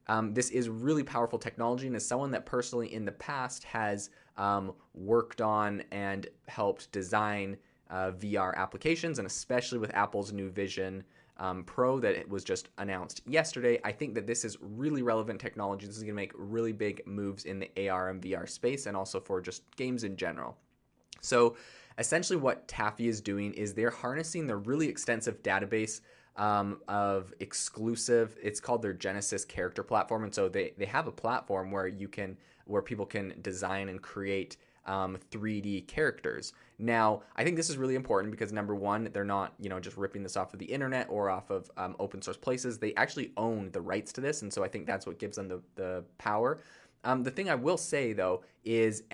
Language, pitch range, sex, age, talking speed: English, 100-120 Hz, male, 20-39, 195 wpm